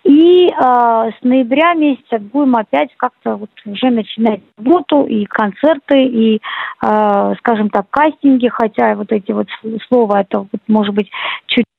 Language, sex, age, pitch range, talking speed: Russian, female, 40-59, 215-275 Hz, 150 wpm